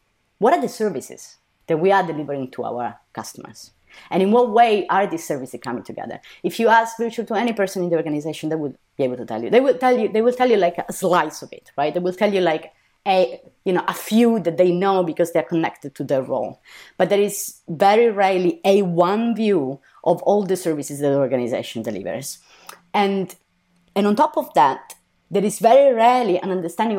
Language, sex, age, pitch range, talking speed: English, female, 30-49, 150-210 Hz, 220 wpm